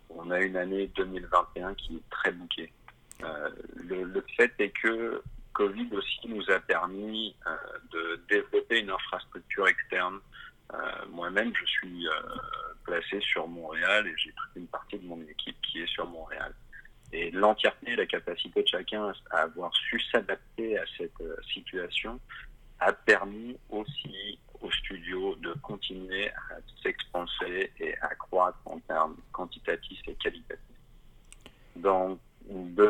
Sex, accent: male, French